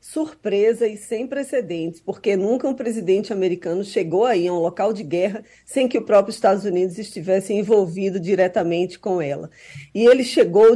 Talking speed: 165 wpm